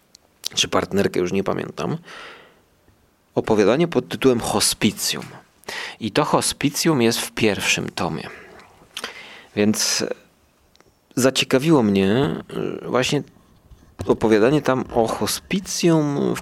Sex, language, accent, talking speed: male, Polish, native, 90 wpm